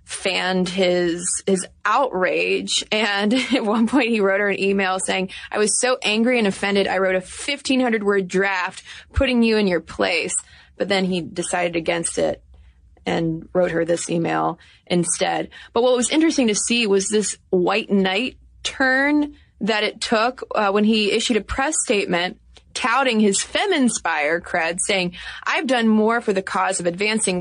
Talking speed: 170 wpm